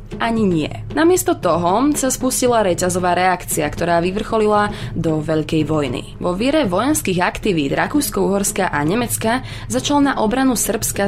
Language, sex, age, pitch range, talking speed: Slovak, female, 20-39, 160-210 Hz, 135 wpm